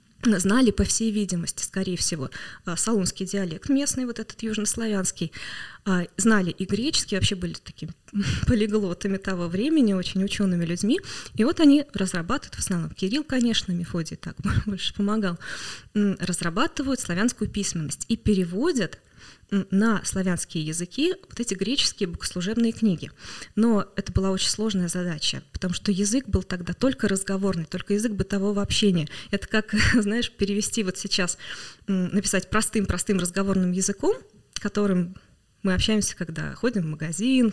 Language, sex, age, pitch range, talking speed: Russian, female, 20-39, 180-220 Hz, 135 wpm